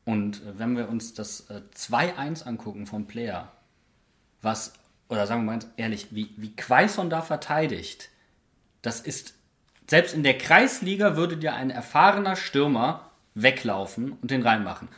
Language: German